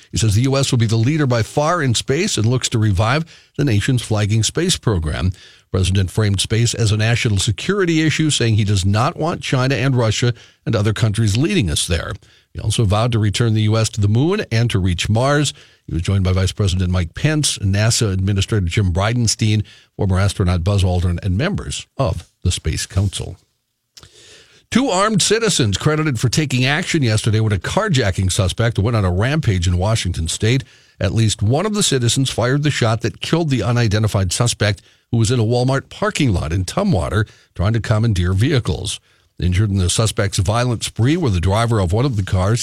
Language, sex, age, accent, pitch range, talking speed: English, male, 50-69, American, 100-125 Hz, 195 wpm